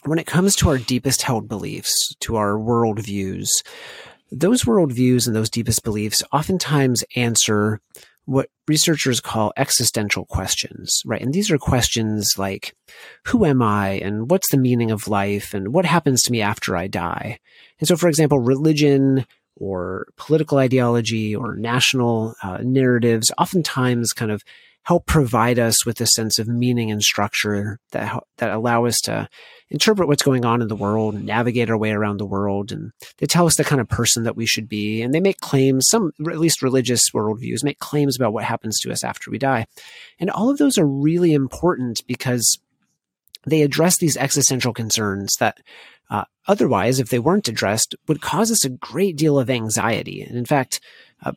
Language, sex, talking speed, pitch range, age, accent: English, male, 180 wpm, 115-150 Hz, 30-49, American